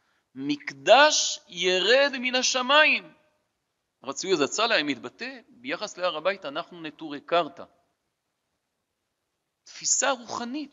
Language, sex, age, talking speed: Hebrew, male, 40-59, 90 wpm